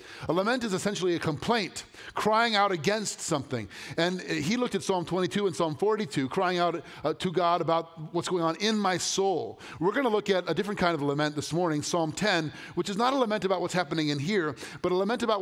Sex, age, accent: male, 40-59, American